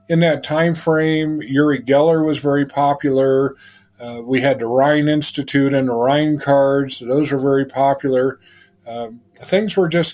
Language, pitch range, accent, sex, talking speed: English, 125-145 Hz, American, male, 160 wpm